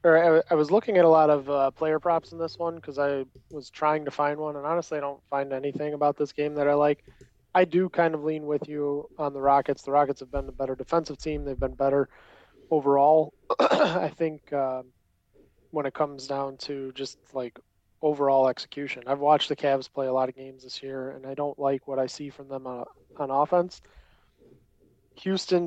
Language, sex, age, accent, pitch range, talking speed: English, male, 20-39, American, 130-150 Hz, 210 wpm